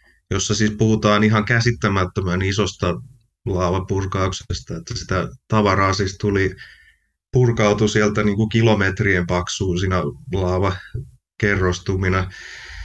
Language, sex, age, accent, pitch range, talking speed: Finnish, male, 30-49, native, 95-110 Hz, 90 wpm